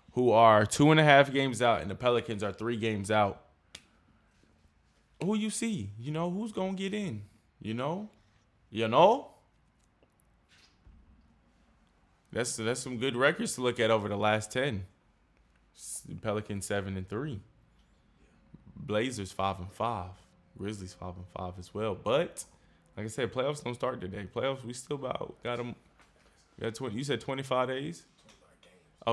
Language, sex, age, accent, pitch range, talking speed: English, male, 20-39, American, 95-125 Hz, 155 wpm